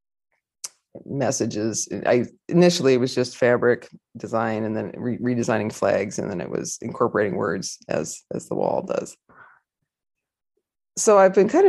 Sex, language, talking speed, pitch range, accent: female, English, 140 wpm, 120-150 Hz, American